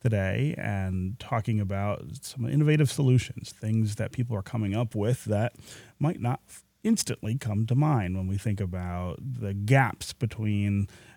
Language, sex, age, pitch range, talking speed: English, male, 30-49, 105-135 Hz, 150 wpm